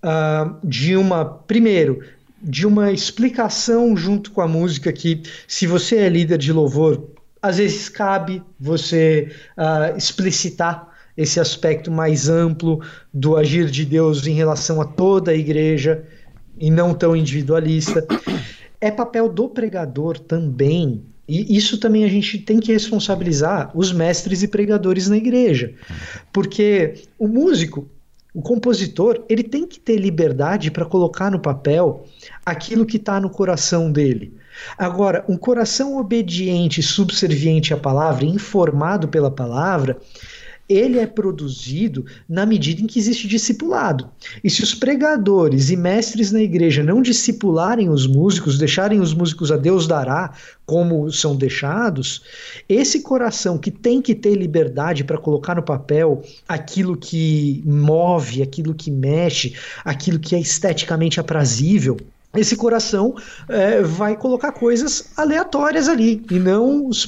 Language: Portuguese